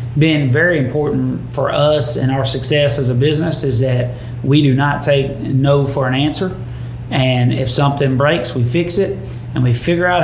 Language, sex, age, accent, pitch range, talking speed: English, male, 30-49, American, 120-140 Hz, 190 wpm